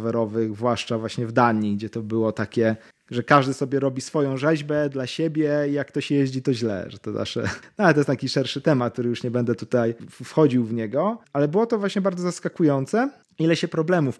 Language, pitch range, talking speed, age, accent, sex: Polish, 120-150 Hz, 210 wpm, 30-49, native, male